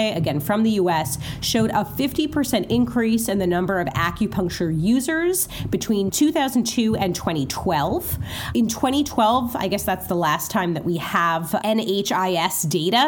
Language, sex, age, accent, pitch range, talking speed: English, female, 30-49, American, 185-245 Hz, 140 wpm